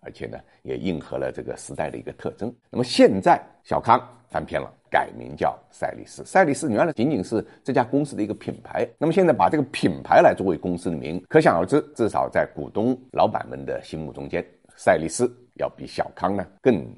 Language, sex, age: Chinese, male, 50-69